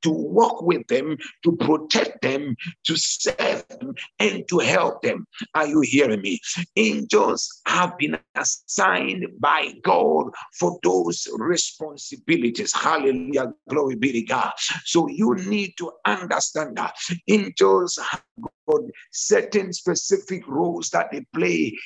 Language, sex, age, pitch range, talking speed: English, male, 60-79, 160-245 Hz, 130 wpm